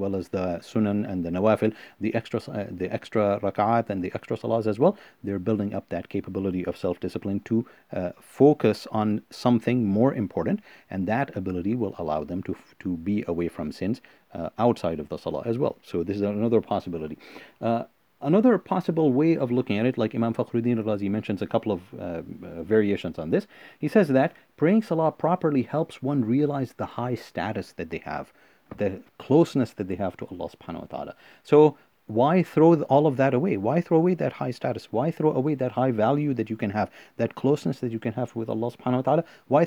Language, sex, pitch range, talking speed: English, male, 100-130 Hz, 205 wpm